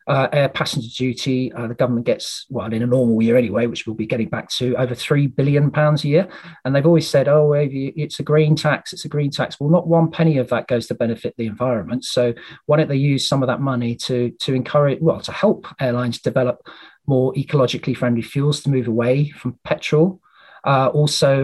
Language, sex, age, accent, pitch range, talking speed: English, male, 40-59, British, 125-150 Hz, 220 wpm